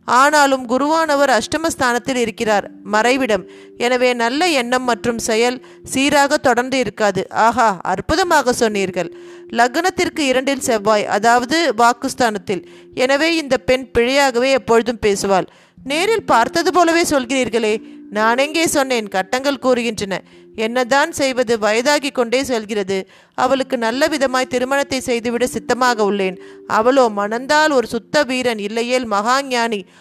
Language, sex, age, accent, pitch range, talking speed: Tamil, female, 30-49, native, 220-275 Hz, 110 wpm